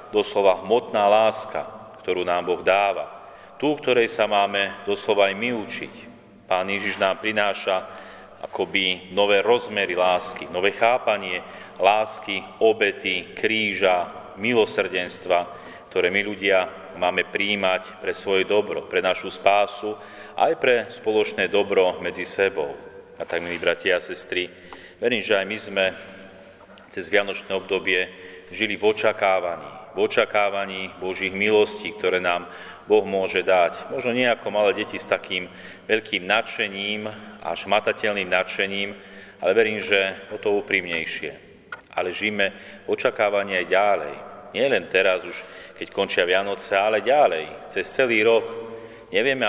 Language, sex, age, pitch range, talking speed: Slovak, male, 30-49, 95-105 Hz, 130 wpm